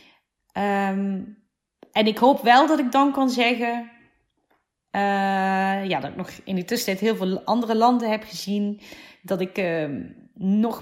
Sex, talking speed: female, 145 wpm